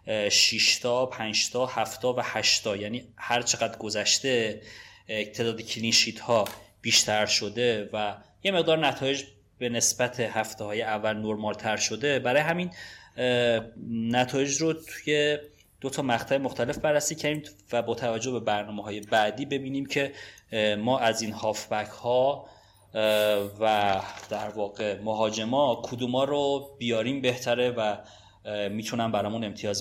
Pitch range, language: 105-130 Hz, Persian